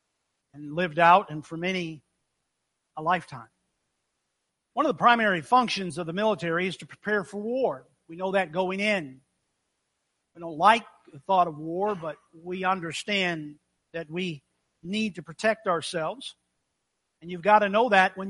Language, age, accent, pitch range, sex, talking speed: English, 50-69, American, 155-195 Hz, male, 160 wpm